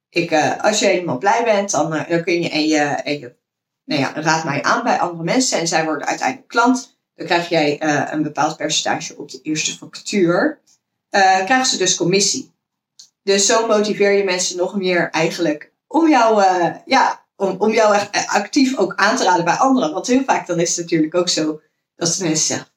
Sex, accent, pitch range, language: female, Dutch, 165-220 Hz, Dutch